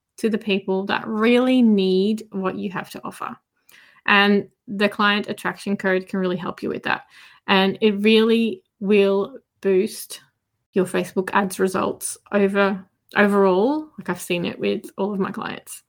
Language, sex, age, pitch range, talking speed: English, female, 20-39, 200-235 Hz, 160 wpm